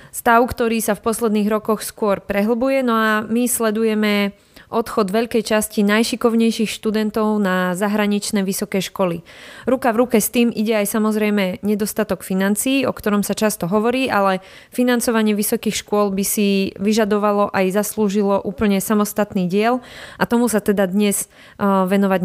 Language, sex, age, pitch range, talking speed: Slovak, female, 20-39, 200-235 Hz, 150 wpm